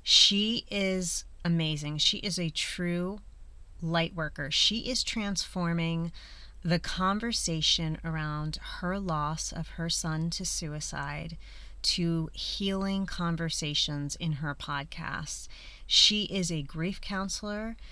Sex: female